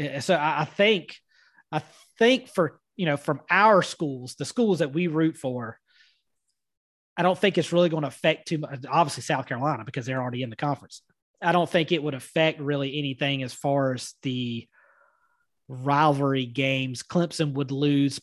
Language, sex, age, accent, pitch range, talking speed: English, male, 30-49, American, 130-160 Hz, 175 wpm